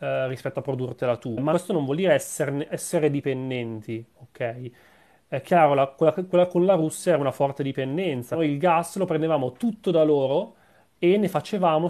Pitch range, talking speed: 130-155 Hz, 175 wpm